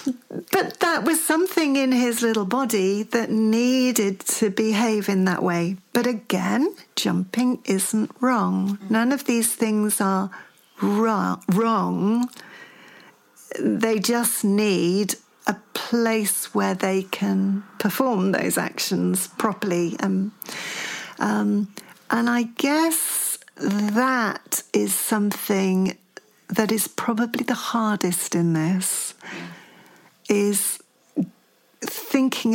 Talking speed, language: 100 wpm, English